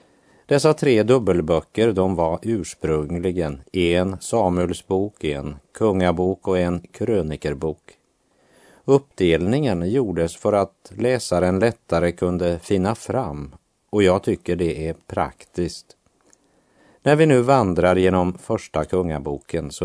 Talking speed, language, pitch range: 110 wpm, Swedish, 85-110 Hz